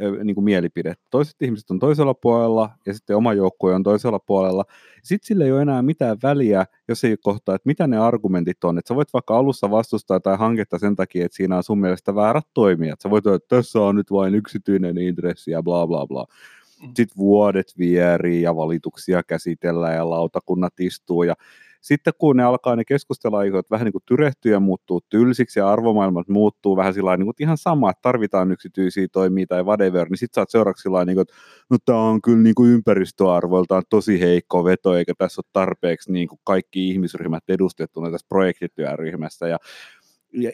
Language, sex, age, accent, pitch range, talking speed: Finnish, male, 30-49, native, 90-120 Hz, 180 wpm